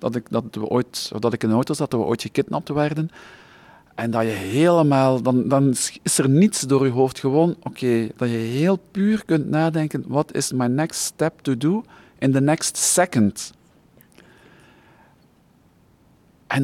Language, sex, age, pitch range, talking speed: English, male, 50-69, 115-145 Hz, 175 wpm